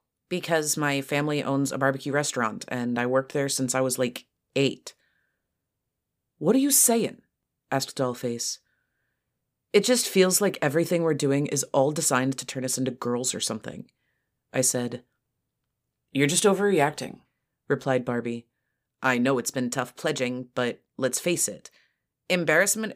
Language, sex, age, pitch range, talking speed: English, female, 30-49, 125-160 Hz, 150 wpm